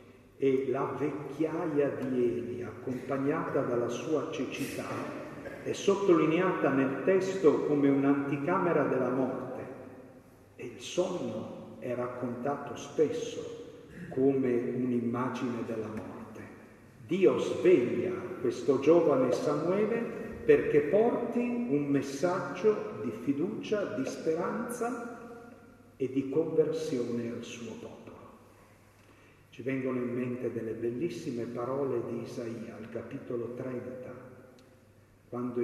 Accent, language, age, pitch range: native, Italian, 50-69, 120-155 Hz